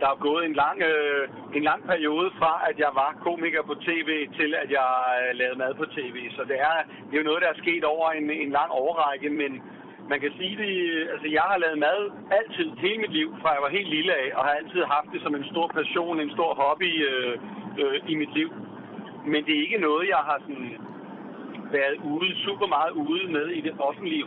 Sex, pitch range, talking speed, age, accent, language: male, 140-180 Hz, 230 wpm, 60-79, native, Danish